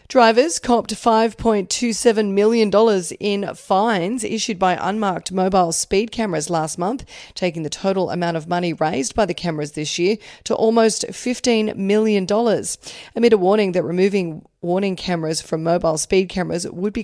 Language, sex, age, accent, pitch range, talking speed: English, female, 30-49, Australian, 170-205 Hz, 150 wpm